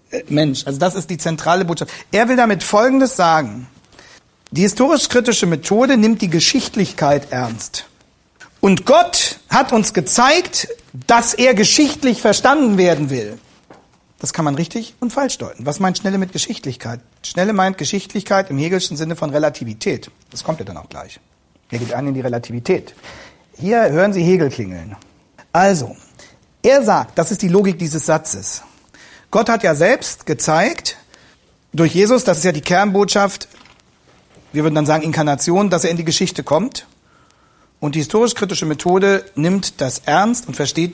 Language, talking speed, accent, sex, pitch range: German, 160 wpm, German, male, 150-205 Hz